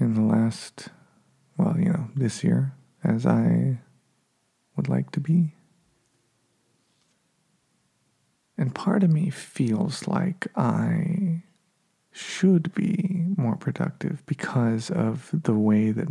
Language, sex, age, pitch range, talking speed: English, male, 40-59, 145-190 Hz, 110 wpm